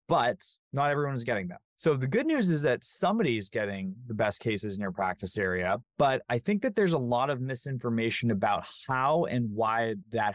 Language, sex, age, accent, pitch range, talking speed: English, male, 20-39, American, 105-130 Hz, 210 wpm